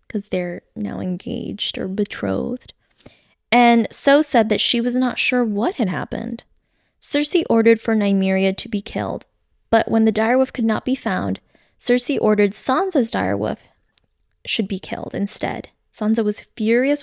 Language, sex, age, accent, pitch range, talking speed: English, female, 10-29, American, 200-235 Hz, 150 wpm